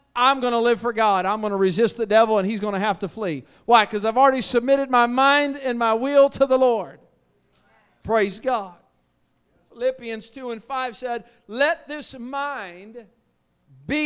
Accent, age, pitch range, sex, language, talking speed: American, 50-69, 200-280 Hz, male, English, 185 wpm